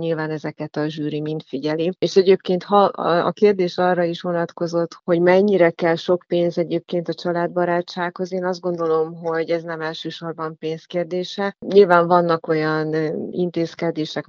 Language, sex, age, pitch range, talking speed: Hungarian, female, 30-49, 155-170 Hz, 145 wpm